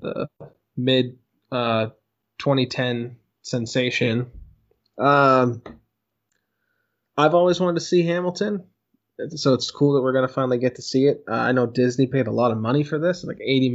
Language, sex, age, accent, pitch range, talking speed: English, male, 20-39, American, 120-140 Hz, 155 wpm